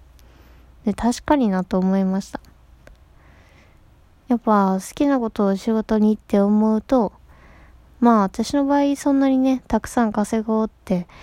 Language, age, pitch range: Japanese, 20-39, 185-230 Hz